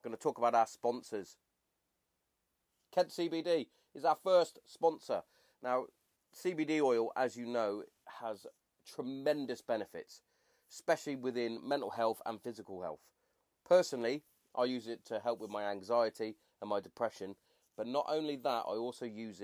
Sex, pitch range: male, 115-160 Hz